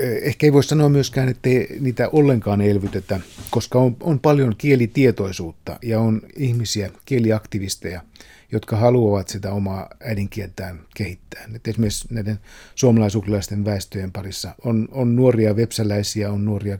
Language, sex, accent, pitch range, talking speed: Finnish, male, native, 100-120 Hz, 130 wpm